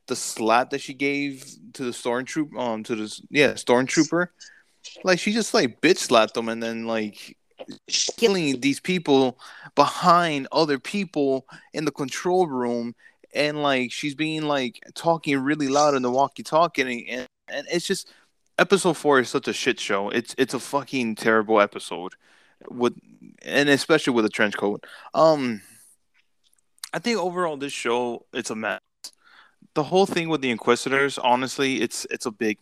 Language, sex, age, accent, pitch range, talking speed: English, male, 20-39, American, 115-150 Hz, 165 wpm